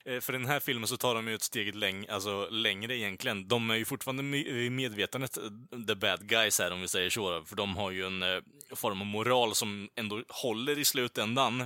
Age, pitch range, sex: 20-39, 95-115 Hz, male